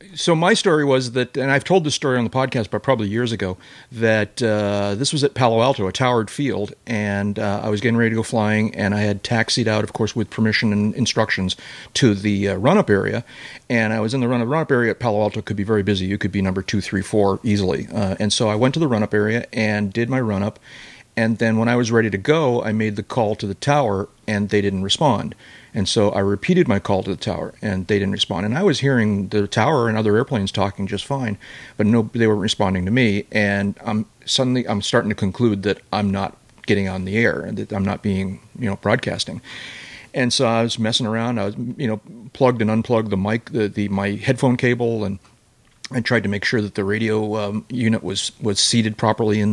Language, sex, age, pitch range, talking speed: English, male, 40-59, 100-115 Hz, 240 wpm